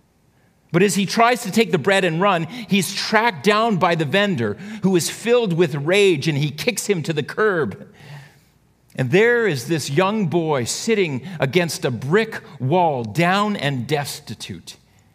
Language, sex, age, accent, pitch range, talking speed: English, male, 50-69, American, 135-195 Hz, 165 wpm